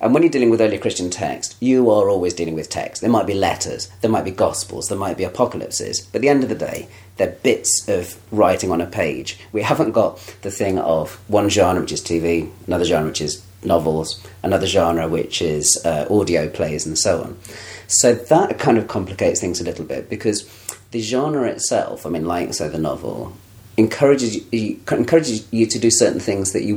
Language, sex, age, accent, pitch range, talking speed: English, male, 40-59, British, 90-115 Hz, 215 wpm